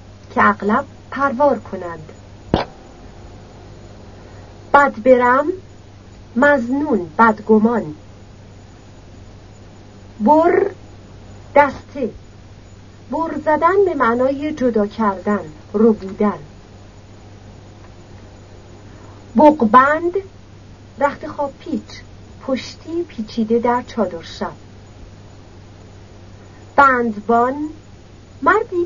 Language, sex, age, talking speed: Persian, female, 40-59, 60 wpm